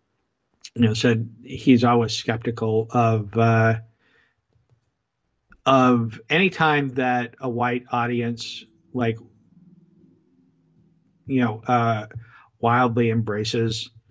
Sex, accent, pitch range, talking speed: male, American, 110-125 Hz, 90 wpm